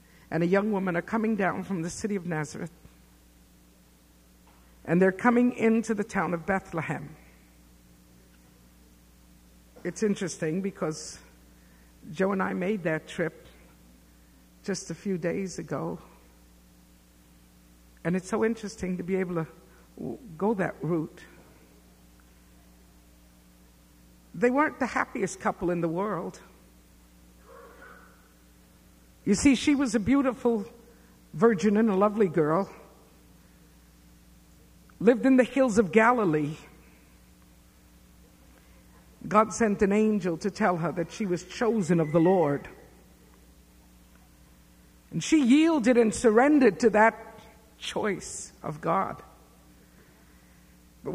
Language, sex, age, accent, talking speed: English, female, 60-79, American, 110 wpm